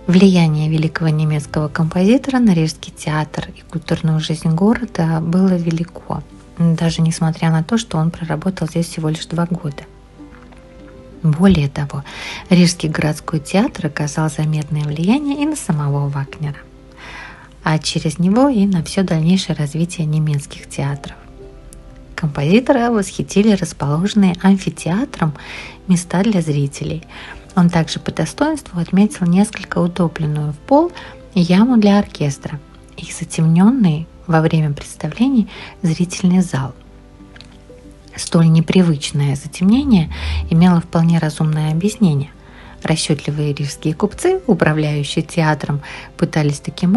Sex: female